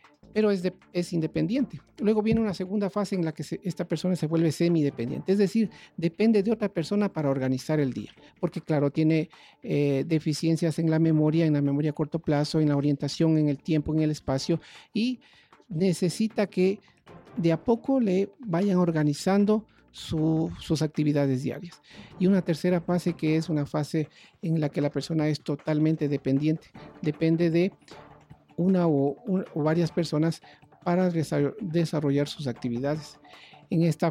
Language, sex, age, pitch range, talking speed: Spanish, male, 50-69, 145-175 Hz, 170 wpm